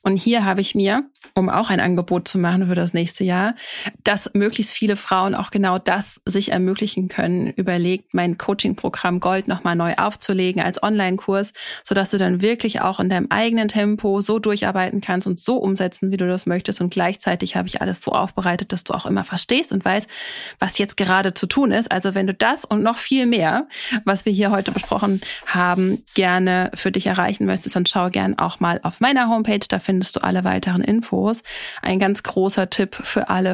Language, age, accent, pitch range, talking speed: German, 30-49, German, 180-205 Hz, 200 wpm